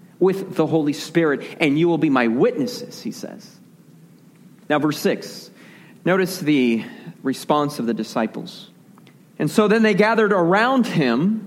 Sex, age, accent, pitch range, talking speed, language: male, 40-59, American, 200-250 Hz, 145 wpm, English